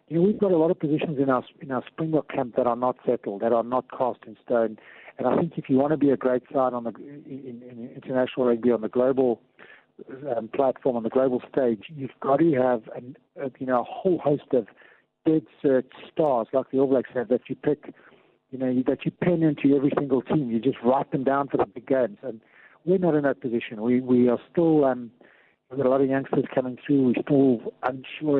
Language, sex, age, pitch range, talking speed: English, male, 50-69, 125-140 Hz, 240 wpm